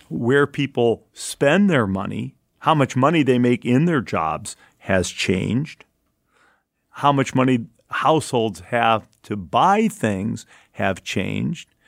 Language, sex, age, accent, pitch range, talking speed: English, male, 40-59, American, 110-140 Hz, 125 wpm